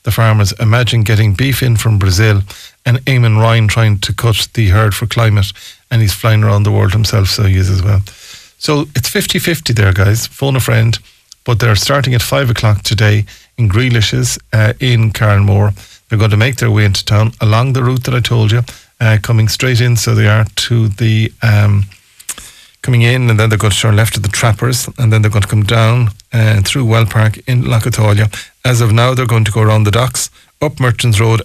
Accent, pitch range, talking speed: Irish, 105-120 Hz, 215 wpm